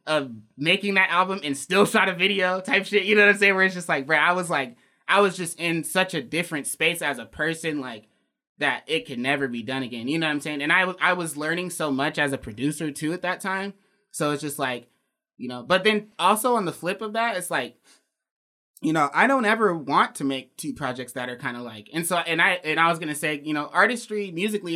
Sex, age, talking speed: male, 20-39, 255 wpm